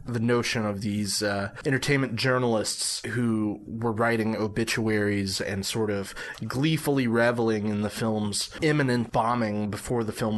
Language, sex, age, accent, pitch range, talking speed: English, male, 20-39, American, 105-130 Hz, 140 wpm